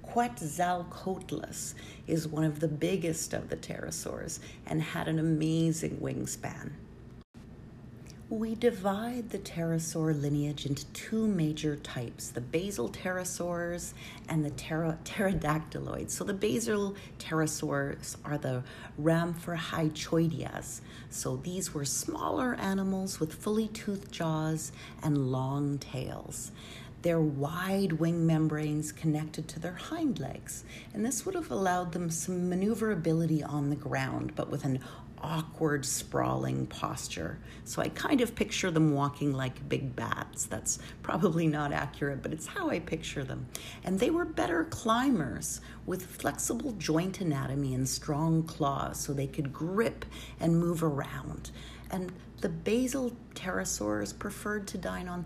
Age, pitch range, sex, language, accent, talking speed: 40-59, 140-185 Hz, female, English, American, 130 wpm